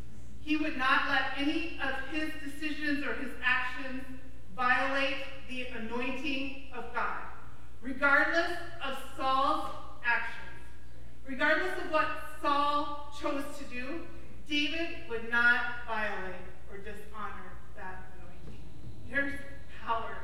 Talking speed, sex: 110 wpm, female